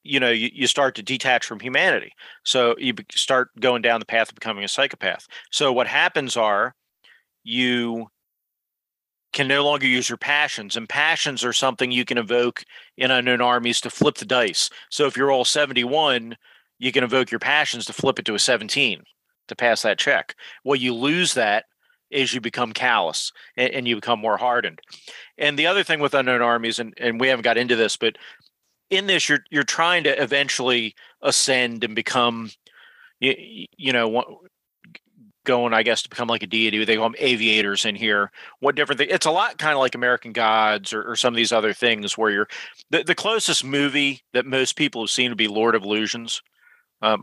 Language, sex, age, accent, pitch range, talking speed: English, male, 40-59, American, 115-135 Hz, 195 wpm